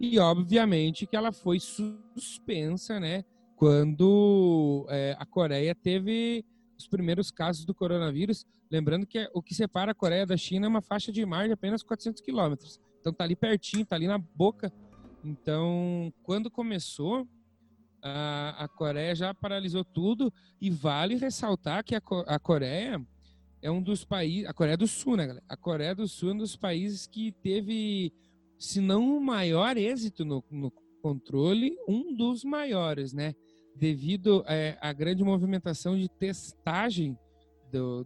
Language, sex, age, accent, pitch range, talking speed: Portuguese, male, 30-49, Brazilian, 150-210 Hz, 160 wpm